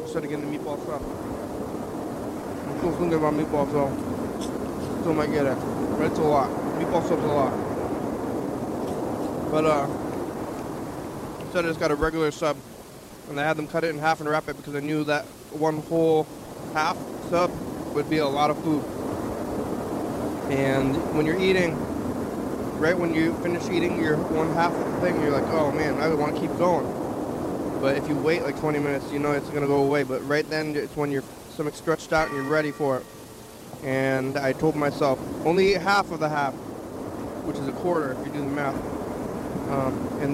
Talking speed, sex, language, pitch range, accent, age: 190 wpm, male, English, 145-160 Hz, American, 20-39